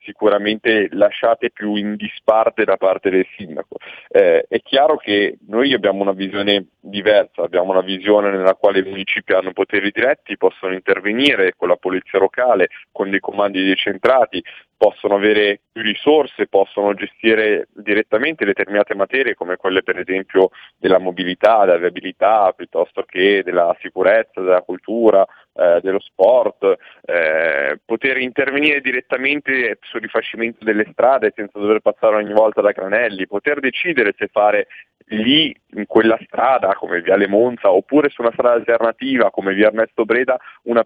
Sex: male